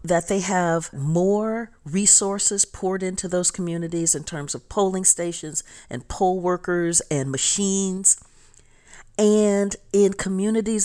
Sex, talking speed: female, 120 wpm